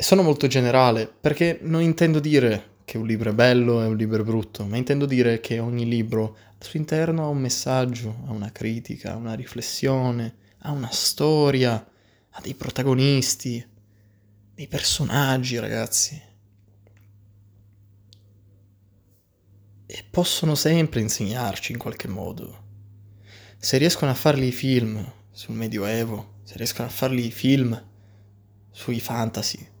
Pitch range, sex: 105-130 Hz, male